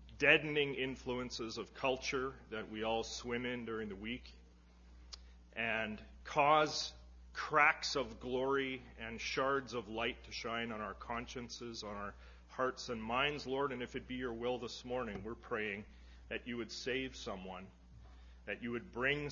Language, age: English, 40-59